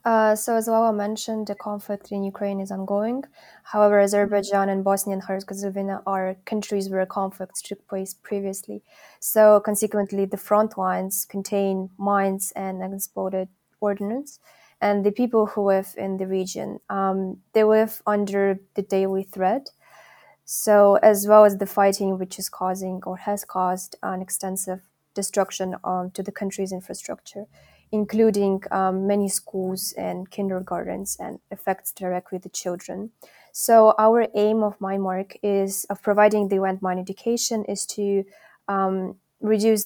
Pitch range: 190-205 Hz